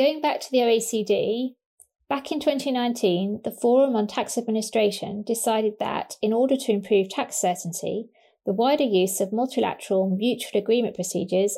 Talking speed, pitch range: 150 wpm, 195-240 Hz